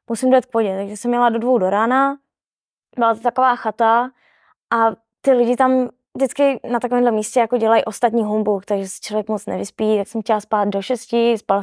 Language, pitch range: Czech, 225-260 Hz